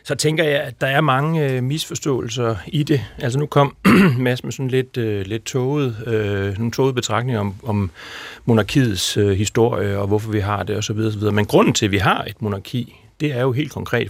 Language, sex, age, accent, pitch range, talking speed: Danish, male, 40-59, native, 105-135 Hz, 215 wpm